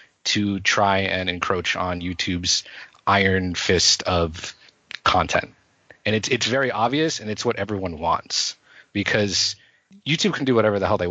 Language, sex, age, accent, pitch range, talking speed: English, male, 30-49, American, 95-115 Hz, 150 wpm